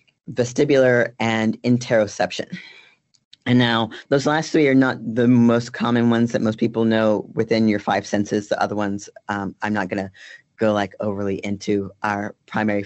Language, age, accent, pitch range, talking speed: English, 40-59, American, 105-125 Hz, 165 wpm